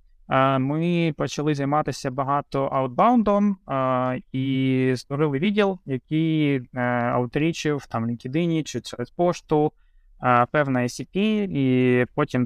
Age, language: 20-39, Ukrainian